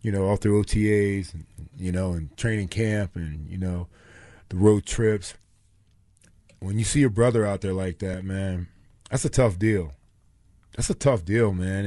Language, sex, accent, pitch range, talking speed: English, male, American, 95-120 Hz, 175 wpm